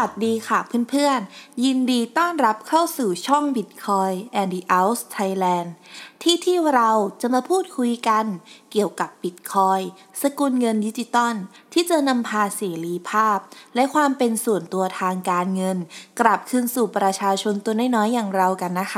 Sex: female